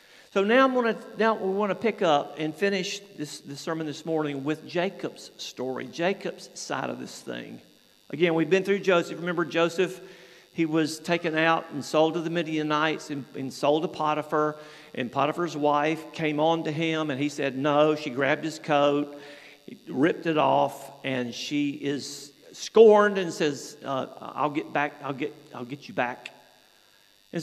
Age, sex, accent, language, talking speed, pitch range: 50-69, male, American, English, 175 wpm, 145-200 Hz